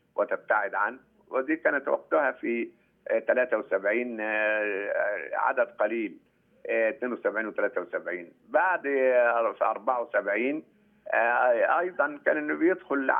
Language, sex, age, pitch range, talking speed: Arabic, male, 50-69, 115-160 Hz, 75 wpm